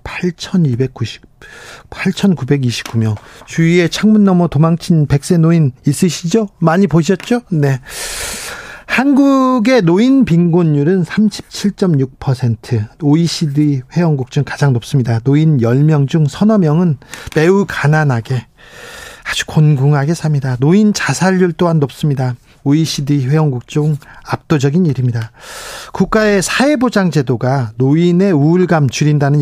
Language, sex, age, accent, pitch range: Korean, male, 40-59, native, 135-180 Hz